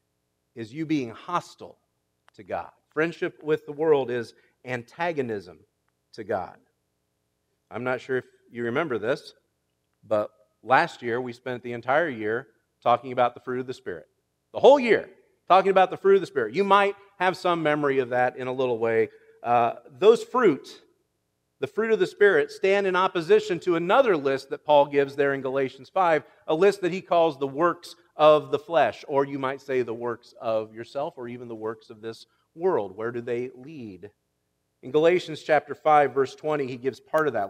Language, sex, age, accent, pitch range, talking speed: English, male, 40-59, American, 120-175 Hz, 190 wpm